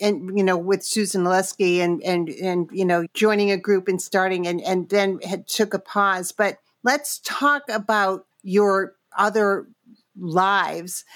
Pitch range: 190-250 Hz